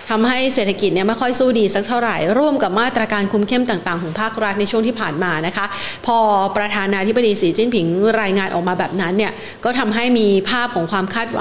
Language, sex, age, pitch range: Thai, female, 30-49, 190-235 Hz